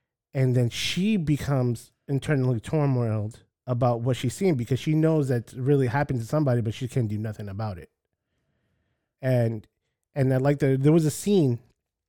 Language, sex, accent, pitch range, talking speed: English, male, American, 115-140 Hz, 170 wpm